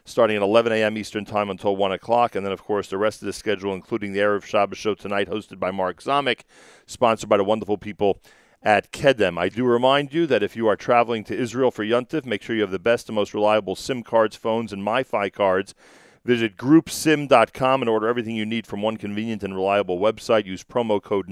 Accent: American